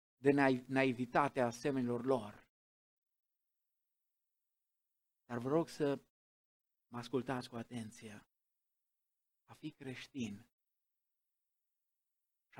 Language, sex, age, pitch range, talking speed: Romanian, male, 50-69, 115-145 Hz, 75 wpm